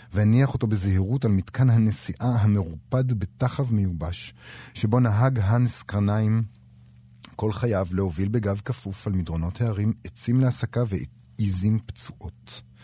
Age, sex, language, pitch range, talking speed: 40-59, male, Hebrew, 95-120 Hz, 115 wpm